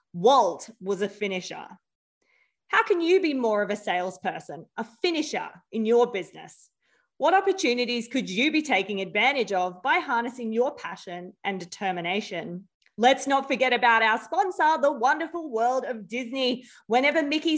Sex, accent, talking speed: female, Australian, 150 wpm